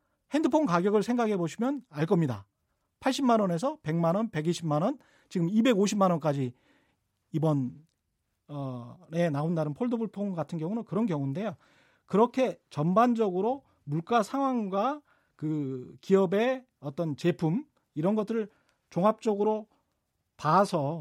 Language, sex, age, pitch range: Korean, male, 40-59, 165-235 Hz